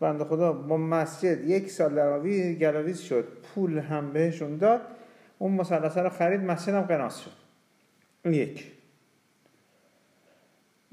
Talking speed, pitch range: 125 wpm, 145-205 Hz